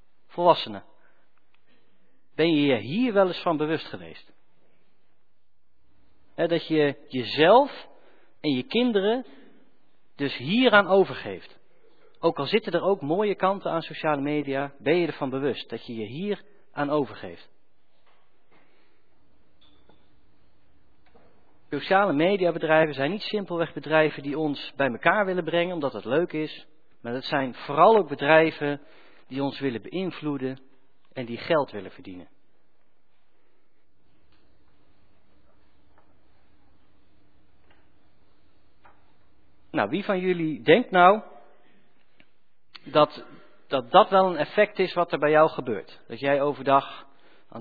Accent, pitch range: Dutch, 110-165 Hz